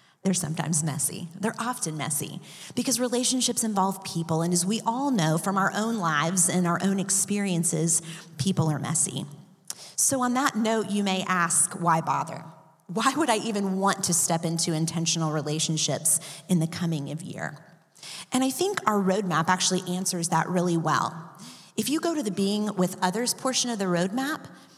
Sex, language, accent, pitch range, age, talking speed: female, English, American, 165-205 Hz, 30-49, 175 wpm